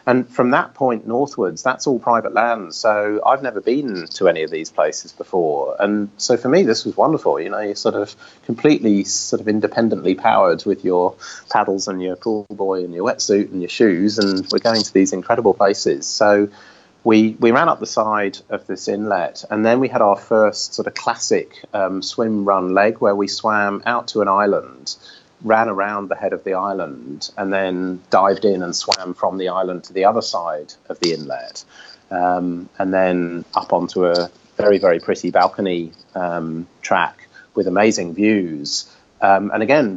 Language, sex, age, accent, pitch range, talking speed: English, male, 30-49, British, 95-110 Hz, 190 wpm